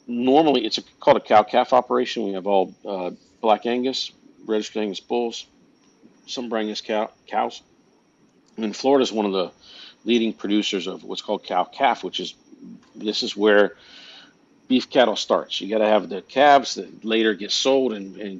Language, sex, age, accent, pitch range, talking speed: English, male, 50-69, American, 100-120 Hz, 175 wpm